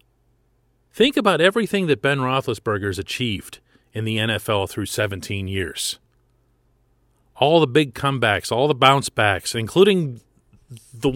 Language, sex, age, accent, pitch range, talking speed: English, male, 40-59, American, 105-165 Hz, 130 wpm